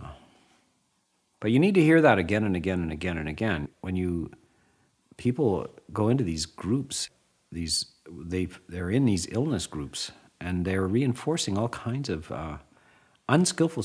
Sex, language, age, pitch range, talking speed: male, English, 50-69, 95-135 Hz, 150 wpm